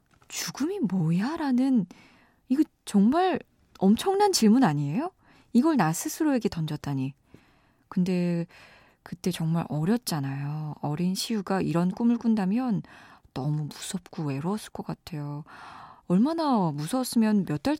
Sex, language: female, Korean